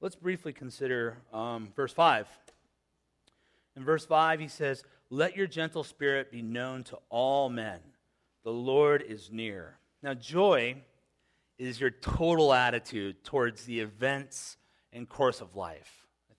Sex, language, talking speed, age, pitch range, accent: male, English, 140 wpm, 30-49, 110-140 Hz, American